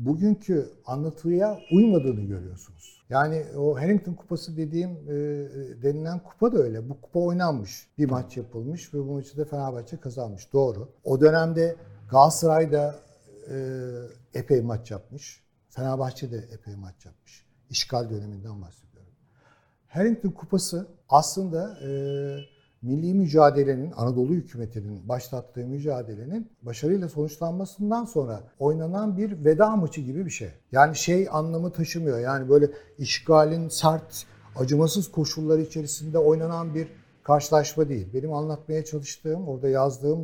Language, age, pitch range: Turkish, 60-79, 130-170 Hz